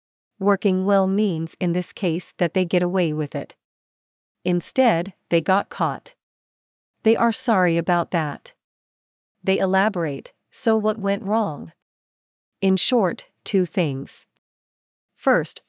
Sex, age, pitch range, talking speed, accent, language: female, 40-59, 170-205 Hz, 120 wpm, American, English